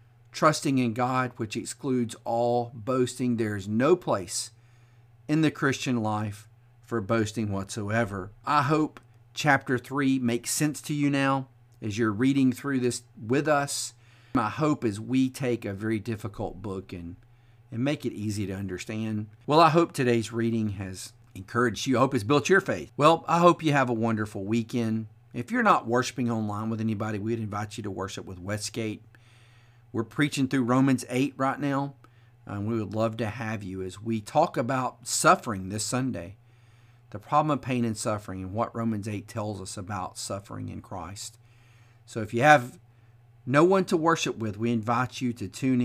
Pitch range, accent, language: 110-130 Hz, American, English